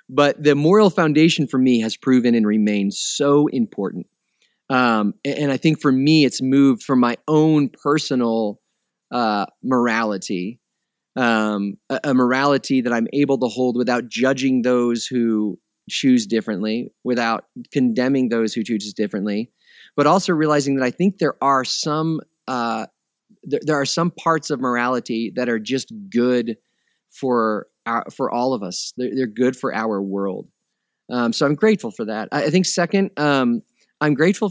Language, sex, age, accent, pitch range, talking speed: English, male, 30-49, American, 115-145 Hz, 160 wpm